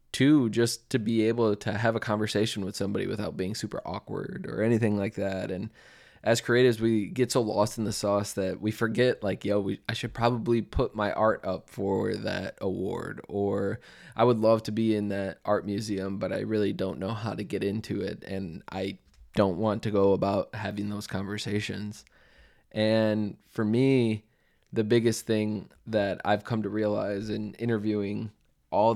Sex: male